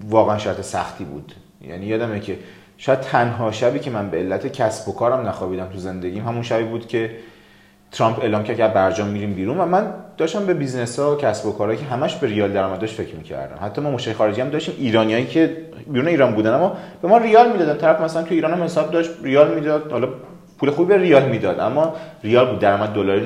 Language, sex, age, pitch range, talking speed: Persian, male, 30-49, 100-155 Hz, 215 wpm